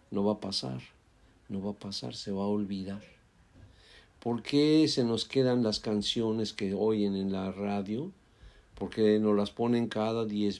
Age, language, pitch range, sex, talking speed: 50-69, Spanish, 105-130 Hz, male, 170 wpm